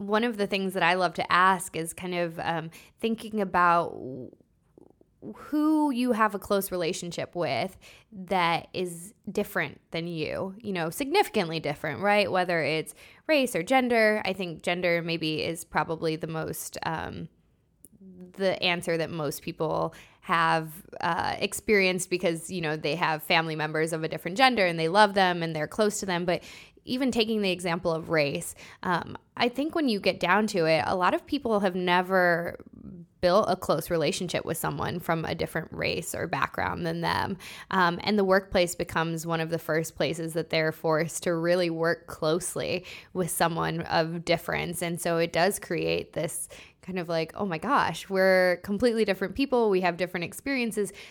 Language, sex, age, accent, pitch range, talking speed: English, female, 20-39, American, 165-200 Hz, 175 wpm